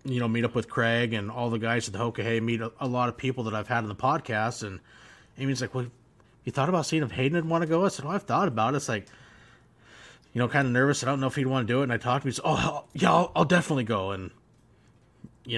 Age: 30-49